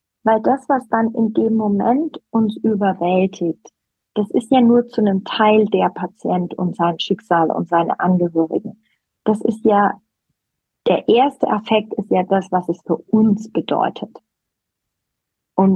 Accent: German